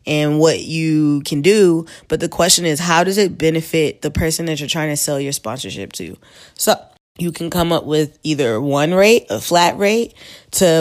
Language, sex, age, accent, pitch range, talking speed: English, female, 20-39, American, 150-170 Hz, 200 wpm